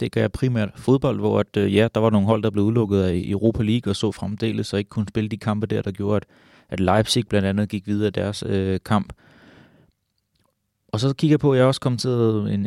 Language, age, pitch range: English, 30-49, 100-115 Hz